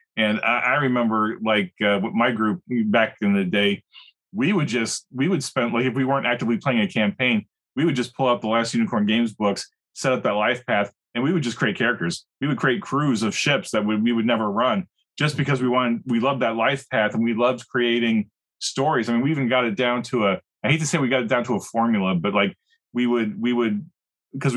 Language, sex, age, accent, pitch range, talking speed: English, male, 30-49, American, 110-135 Hz, 245 wpm